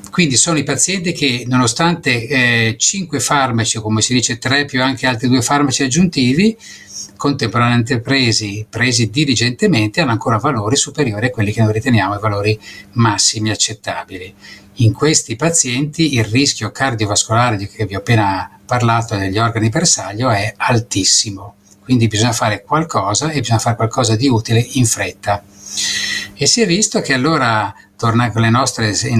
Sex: male